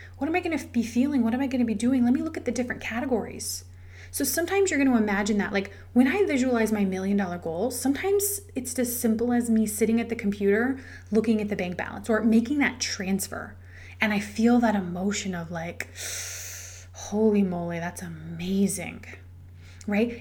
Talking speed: 200 wpm